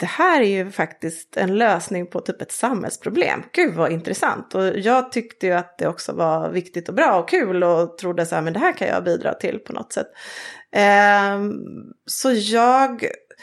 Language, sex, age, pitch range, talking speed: Swedish, female, 30-49, 180-235 Hz, 195 wpm